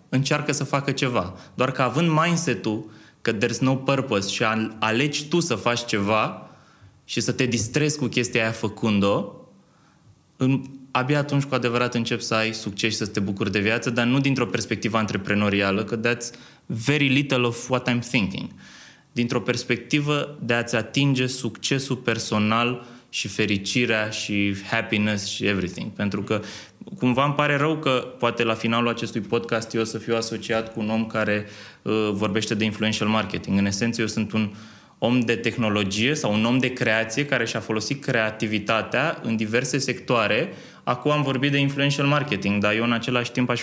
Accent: native